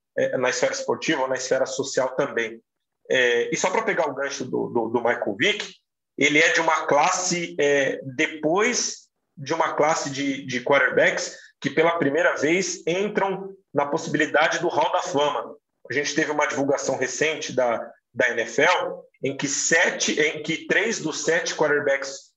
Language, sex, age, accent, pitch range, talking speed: Portuguese, male, 40-59, Brazilian, 130-185 Hz, 165 wpm